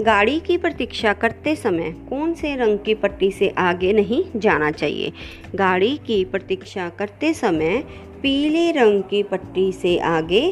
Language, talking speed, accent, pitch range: Hindi, 150 wpm, native, 175-225 Hz